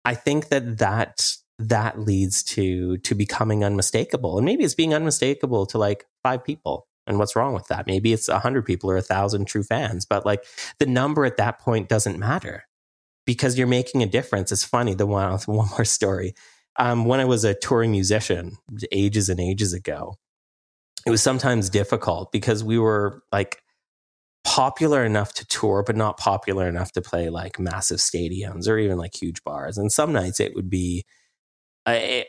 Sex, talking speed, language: male, 185 wpm, English